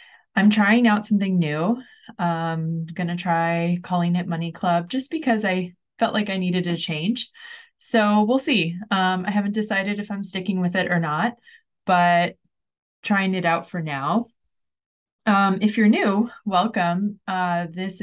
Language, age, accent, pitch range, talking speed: English, 20-39, American, 170-210 Hz, 165 wpm